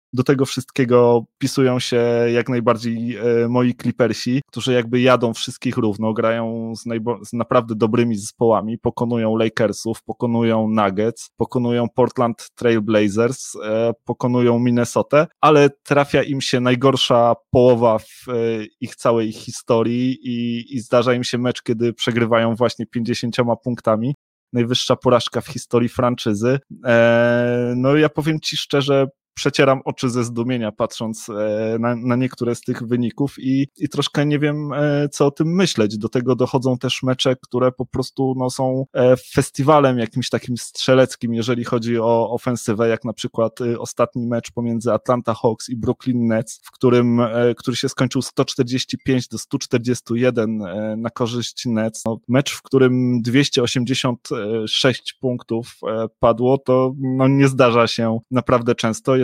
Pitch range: 115-130 Hz